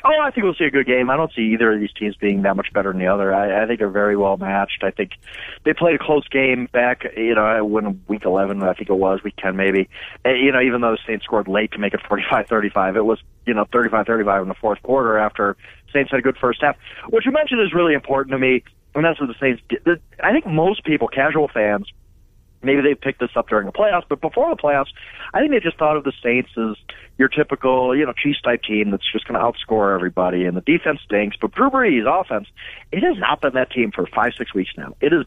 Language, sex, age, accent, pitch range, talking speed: English, male, 30-49, American, 105-150 Hz, 260 wpm